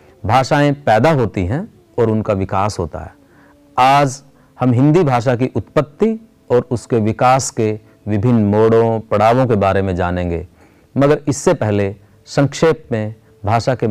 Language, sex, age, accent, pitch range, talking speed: Hindi, male, 50-69, native, 105-145 Hz, 140 wpm